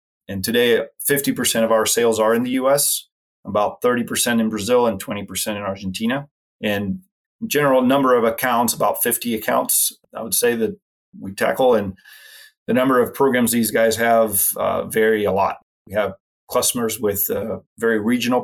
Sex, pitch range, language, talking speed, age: male, 100-125 Hz, English, 165 wpm, 30-49